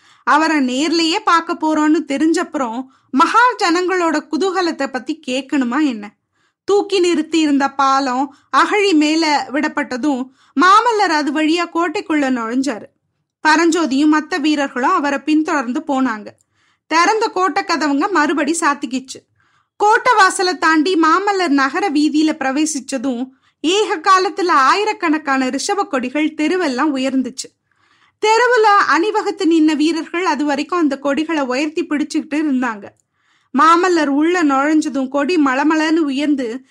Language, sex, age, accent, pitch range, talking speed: Tamil, female, 20-39, native, 275-350 Hz, 90 wpm